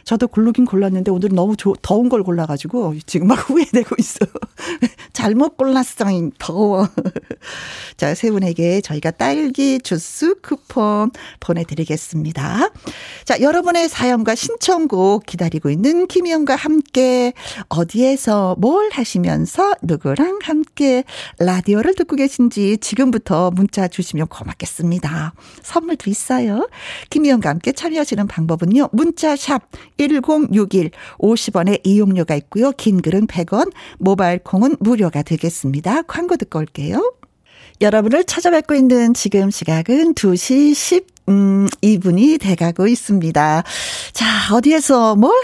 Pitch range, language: 185-290 Hz, Korean